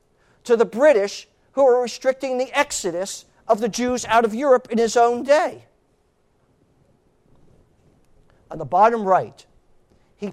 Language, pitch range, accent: English, 180-230 Hz, American